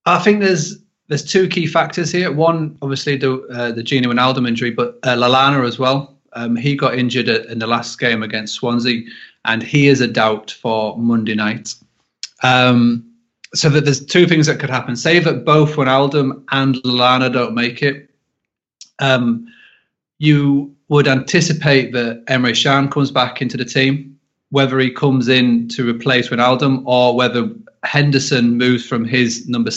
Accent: British